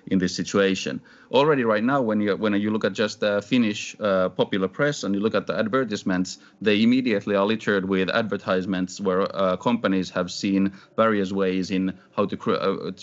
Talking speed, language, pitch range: 195 wpm, English, 90-100 Hz